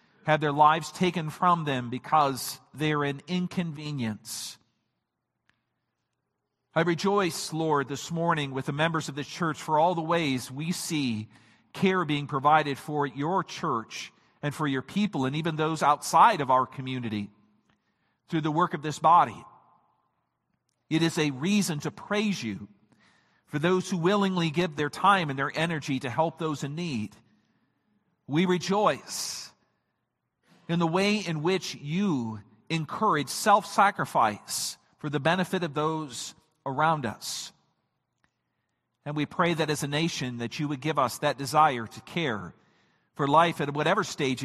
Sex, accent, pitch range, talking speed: male, American, 140-175 Hz, 150 wpm